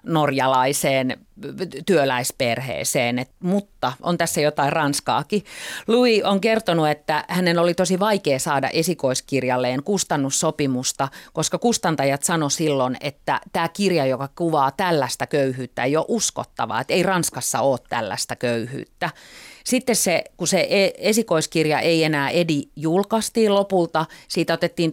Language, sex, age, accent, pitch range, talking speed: Finnish, female, 40-59, native, 140-180 Hz, 125 wpm